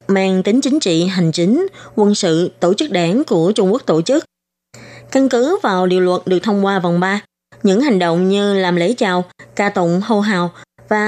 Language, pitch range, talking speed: Vietnamese, 175-215 Hz, 205 wpm